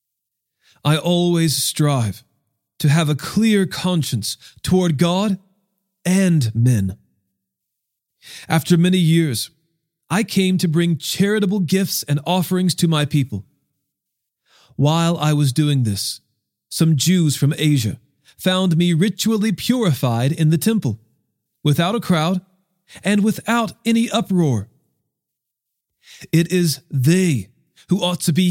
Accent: American